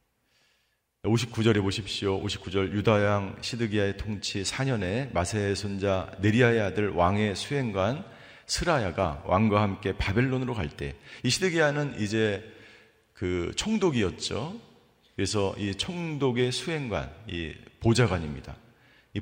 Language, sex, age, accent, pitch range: Korean, male, 40-59, native, 100-135 Hz